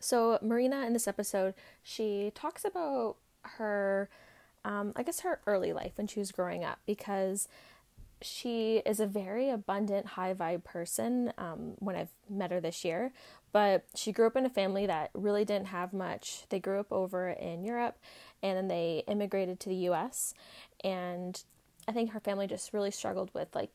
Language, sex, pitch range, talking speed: English, female, 190-225 Hz, 180 wpm